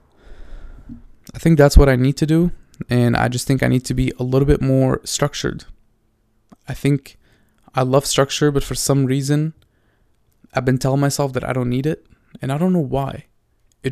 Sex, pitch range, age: male, 110-135 Hz, 20-39